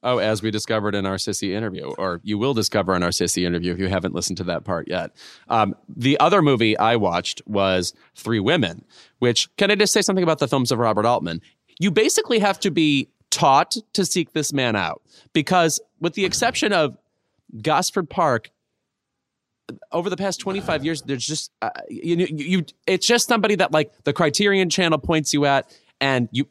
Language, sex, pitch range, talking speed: English, male, 105-165 Hz, 190 wpm